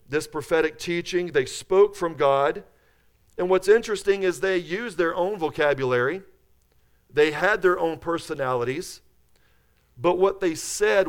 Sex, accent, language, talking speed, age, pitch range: male, American, English, 135 wpm, 40-59, 130-180 Hz